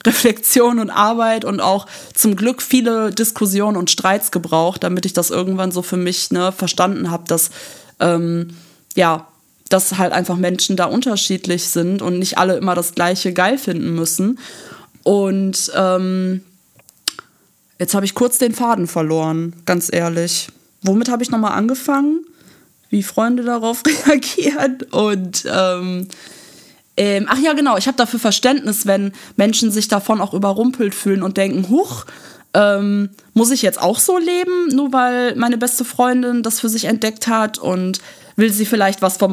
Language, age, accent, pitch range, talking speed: German, 20-39, German, 185-240 Hz, 155 wpm